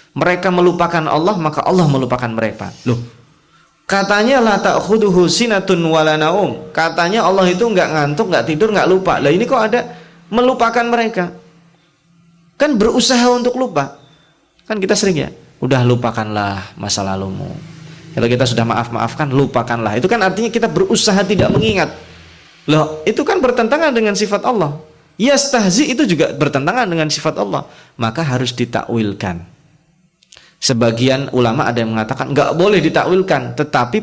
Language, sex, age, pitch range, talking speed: Indonesian, male, 20-39, 140-215 Hz, 140 wpm